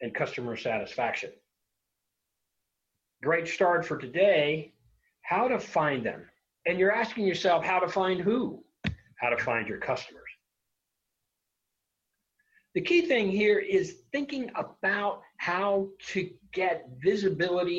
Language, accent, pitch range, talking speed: English, American, 150-255 Hz, 120 wpm